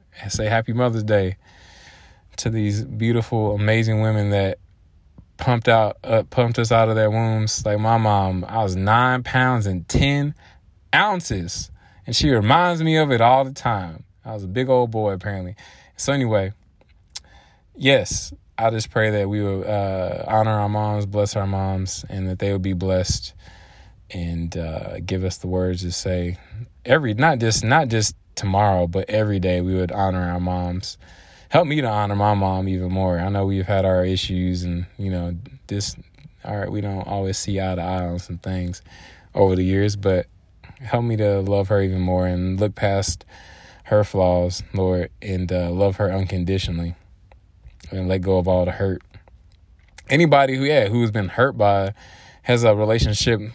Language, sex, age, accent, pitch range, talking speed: English, male, 20-39, American, 90-110 Hz, 180 wpm